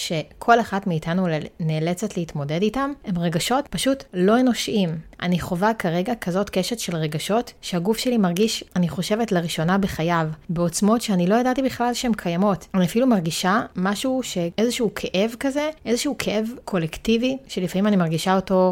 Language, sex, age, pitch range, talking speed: Hebrew, female, 30-49, 170-220 Hz, 145 wpm